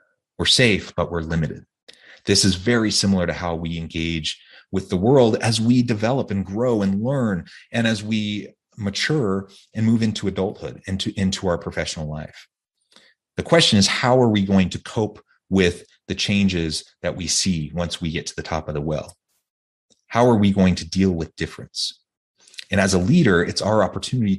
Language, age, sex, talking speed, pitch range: English, 30-49, male, 185 wpm, 90-110 Hz